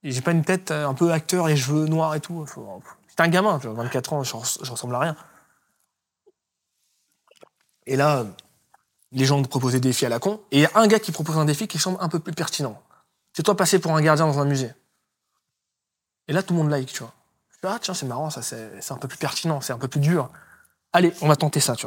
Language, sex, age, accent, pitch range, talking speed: French, male, 20-39, French, 130-170 Hz, 250 wpm